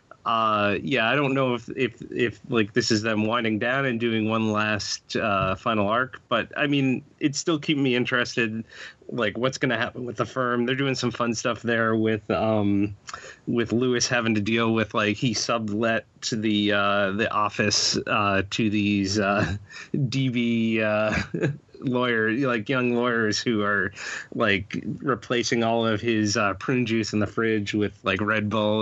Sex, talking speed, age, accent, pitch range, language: male, 180 wpm, 30-49, American, 105-120 Hz, English